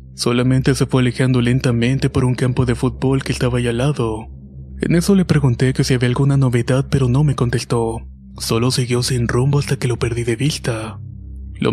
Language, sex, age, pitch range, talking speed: Spanish, male, 20-39, 120-135 Hz, 200 wpm